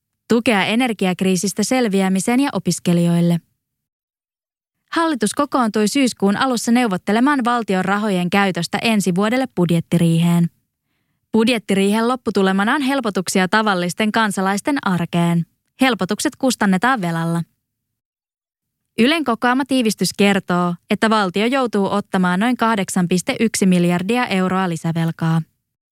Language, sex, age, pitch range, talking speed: English, female, 20-39, 180-235 Hz, 90 wpm